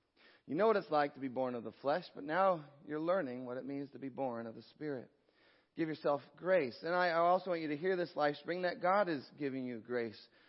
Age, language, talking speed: 40-59, English, 245 wpm